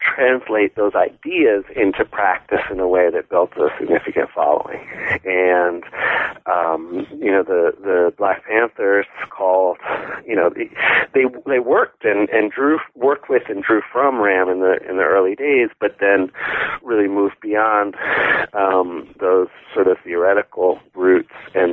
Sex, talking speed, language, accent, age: male, 150 wpm, English, American, 40-59